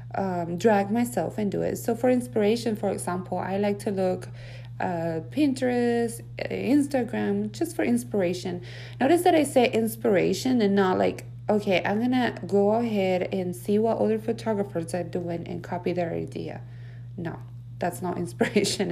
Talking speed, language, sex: 155 wpm, English, female